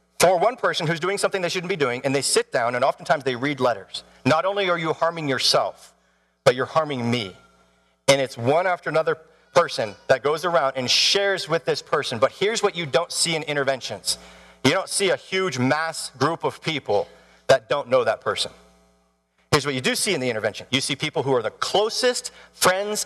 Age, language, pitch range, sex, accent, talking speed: 40-59, English, 130-205 Hz, male, American, 210 wpm